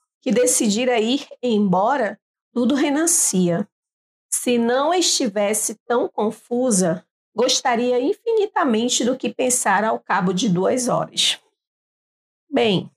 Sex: female